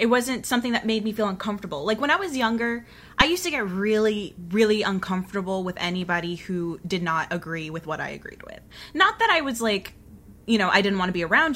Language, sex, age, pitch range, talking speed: English, female, 20-39, 175-220 Hz, 230 wpm